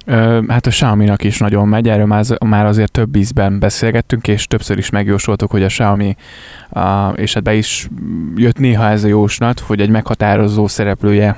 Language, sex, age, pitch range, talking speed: Hungarian, male, 20-39, 105-115 Hz, 170 wpm